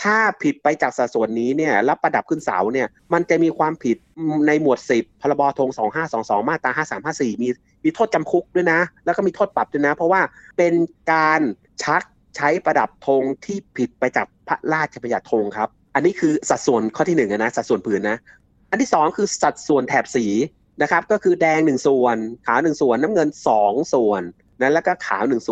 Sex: male